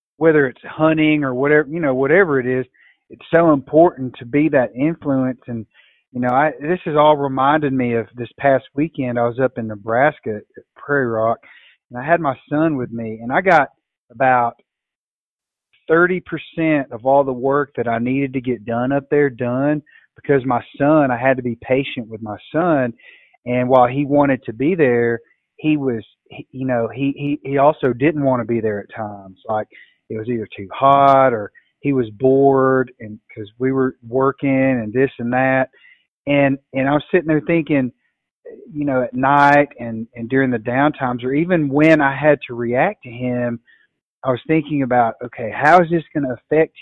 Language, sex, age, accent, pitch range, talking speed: English, male, 30-49, American, 120-150 Hz, 195 wpm